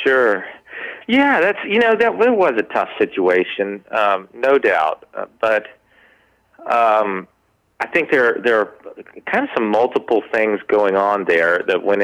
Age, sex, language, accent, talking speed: 30-49, male, English, American, 155 wpm